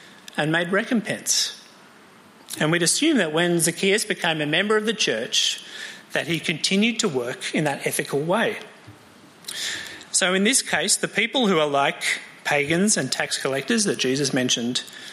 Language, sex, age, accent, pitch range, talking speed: English, male, 40-59, Australian, 150-210 Hz, 160 wpm